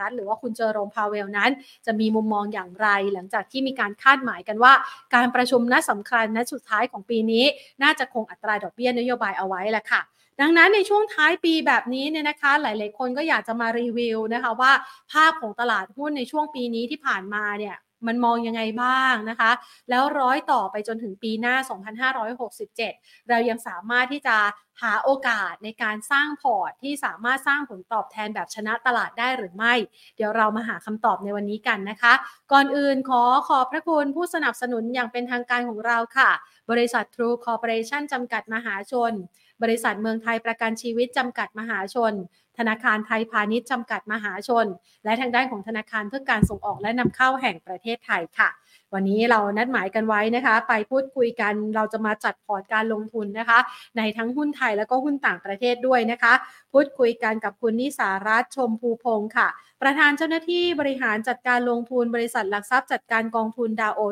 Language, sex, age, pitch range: Thai, female, 30-49, 215-260 Hz